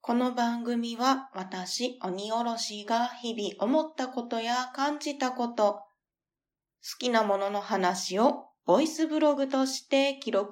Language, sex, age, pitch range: Japanese, female, 20-39, 205-280 Hz